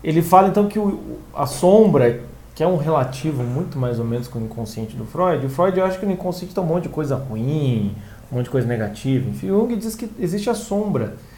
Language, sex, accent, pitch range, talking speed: Portuguese, male, Brazilian, 140-210 Hz, 230 wpm